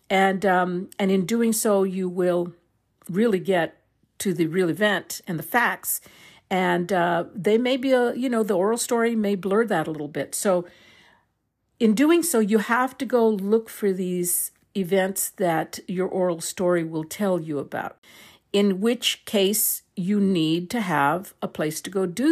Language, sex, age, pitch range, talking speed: English, female, 50-69, 170-215 Hz, 175 wpm